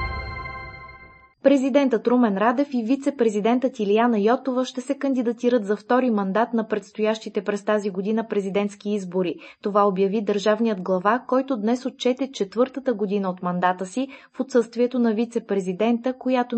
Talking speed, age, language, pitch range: 135 wpm, 20-39, Bulgarian, 205-245 Hz